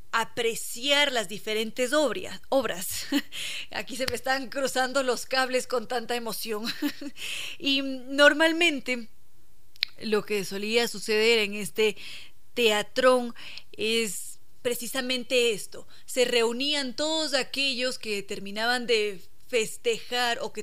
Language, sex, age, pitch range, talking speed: Spanish, female, 20-39, 215-260 Hz, 105 wpm